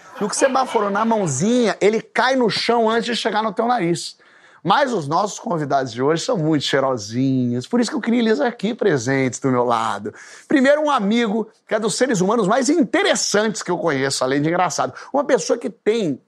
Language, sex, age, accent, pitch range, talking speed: Portuguese, male, 30-49, Brazilian, 175-245 Hz, 205 wpm